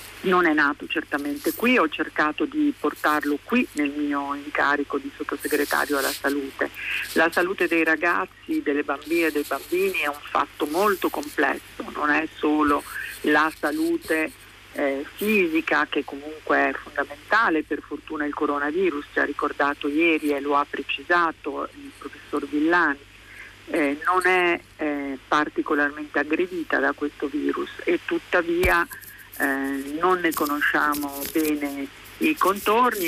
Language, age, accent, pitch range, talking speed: Italian, 50-69, native, 145-175 Hz, 135 wpm